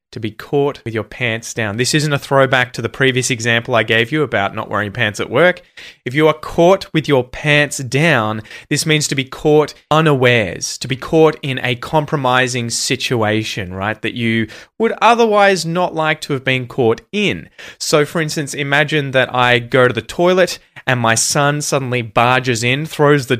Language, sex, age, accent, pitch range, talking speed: English, male, 20-39, Australian, 115-155 Hz, 190 wpm